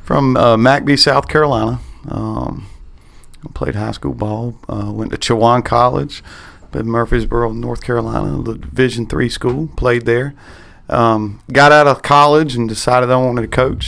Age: 40-59